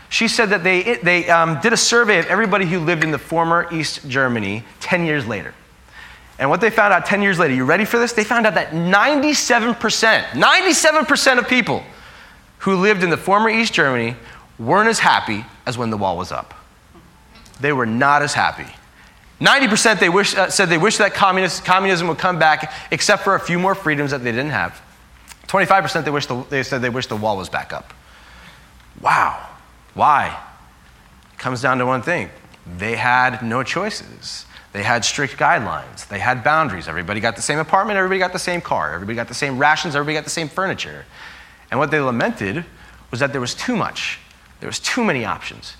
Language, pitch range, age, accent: English, 125-190 Hz, 30-49, American